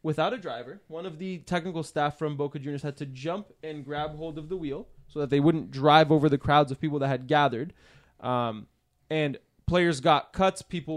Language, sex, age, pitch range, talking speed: English, male, 20-39, 150-225 Hz, 215 wpm